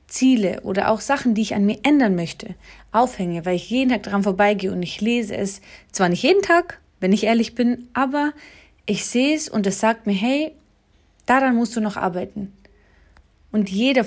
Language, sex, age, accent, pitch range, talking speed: German, female, 30-49, German, 190-240 Hz, 190 wpm